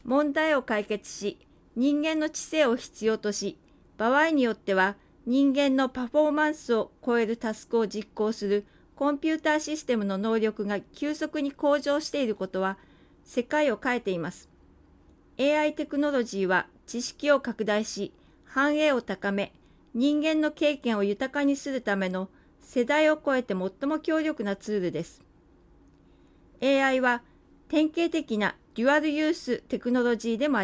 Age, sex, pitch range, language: 40-59, female, 215-290 Hz, Japanese